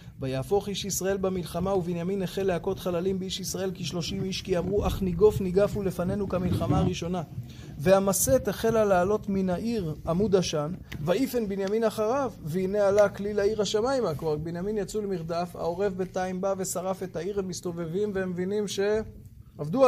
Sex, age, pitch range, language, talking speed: male, 20-39, 175-210 Hz, Hebrew, 155 wpm